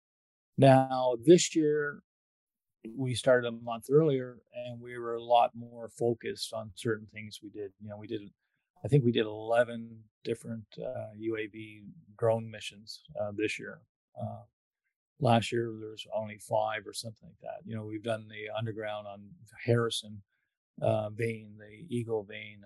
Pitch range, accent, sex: 110-125 Hz, American, male